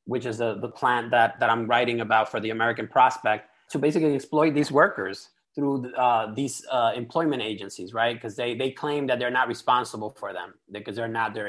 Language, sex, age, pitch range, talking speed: English, male, 30-49, 115-155 Hz, 210 wpm